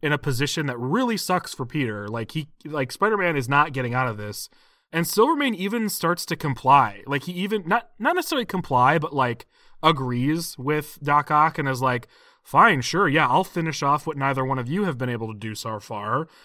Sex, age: male, 30-49